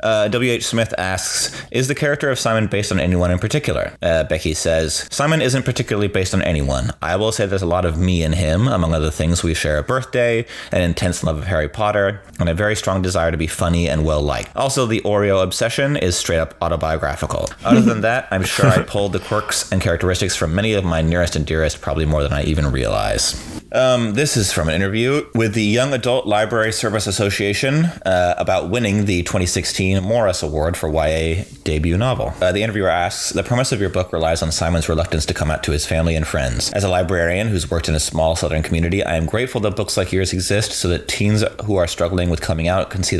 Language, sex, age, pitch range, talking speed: English, male, 30-49, 80-105 Hz, 225 wpm